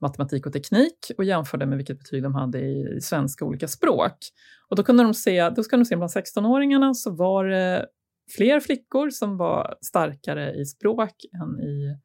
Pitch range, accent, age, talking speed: 140-210 Hz, native, 30-49, 190 wpm